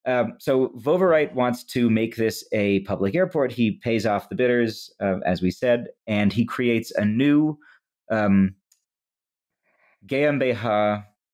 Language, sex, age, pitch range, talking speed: English, male, 30-49, 105-130 Hz, 140 wpm